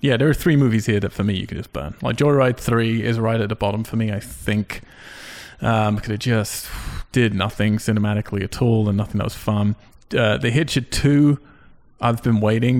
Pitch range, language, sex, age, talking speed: 105-125 Hz, English, male, 30-49, 215 wpm